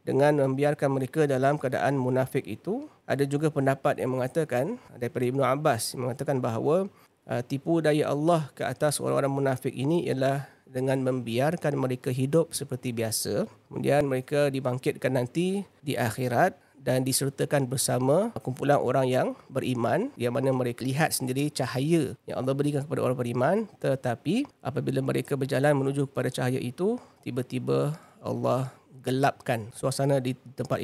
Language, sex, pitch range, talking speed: Malay, male, 125-150 Hz, 140 wpm